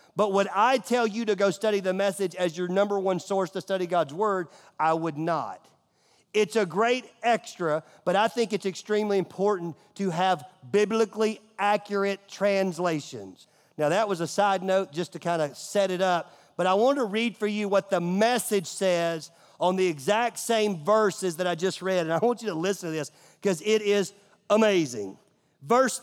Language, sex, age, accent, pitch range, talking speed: English, male, 40-59, American, 175-225 Hz, 190 wpm